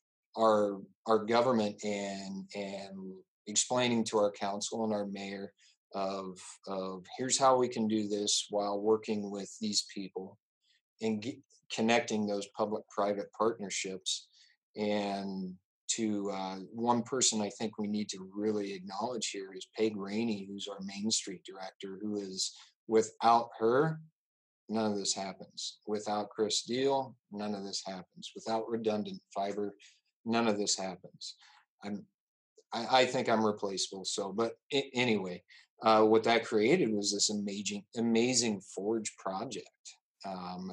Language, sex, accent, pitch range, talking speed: English, male, American, 100-110 Hz, 140 wpm